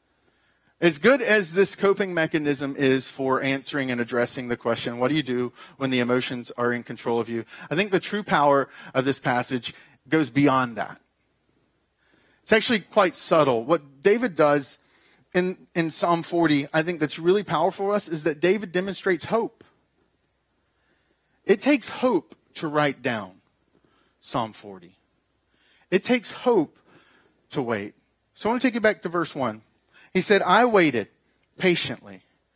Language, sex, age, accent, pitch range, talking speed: English, male, 40-59, American, 130-185 Hz, 160 wpm